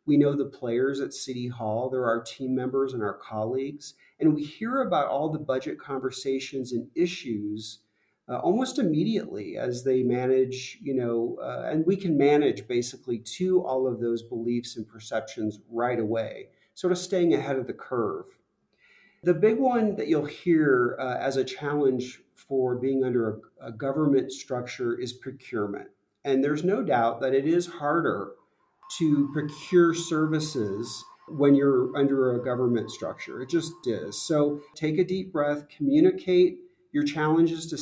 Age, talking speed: 50-69, 160 wpm